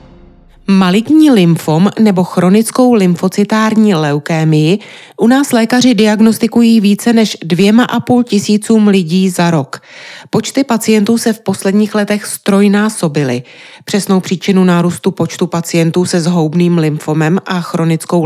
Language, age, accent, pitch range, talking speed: Czech, 30-49, native, 175-225 Hz, 120 wpm